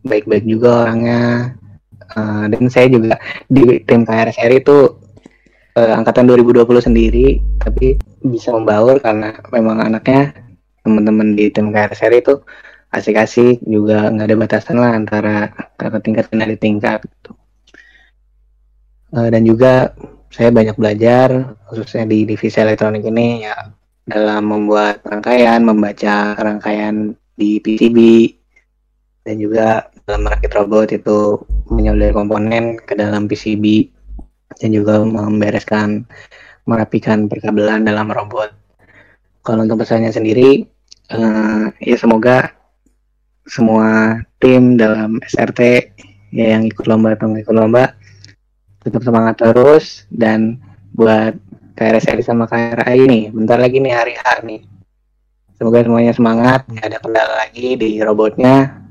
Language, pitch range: Indonesian, 105-115 Hz